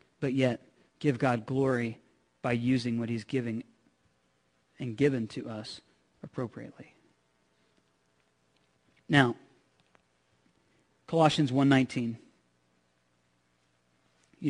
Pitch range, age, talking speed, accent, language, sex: 115-170 Hz, 40-59, 80 wpm, American, English, male